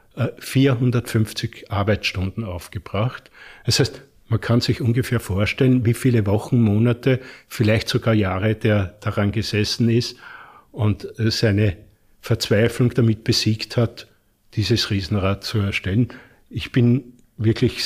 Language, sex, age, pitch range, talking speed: German, male, 50-69, 110-125 Hz, 115 wpm